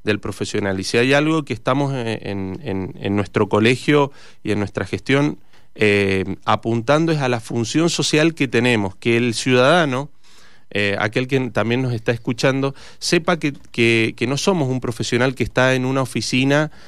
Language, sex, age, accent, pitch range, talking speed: Spanish, male, 30-49, Argentinian, 110-145 Hz, 175 wpm